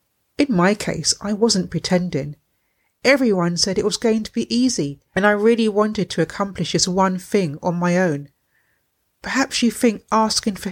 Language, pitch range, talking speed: English, 170-210 Hz, 175 wpm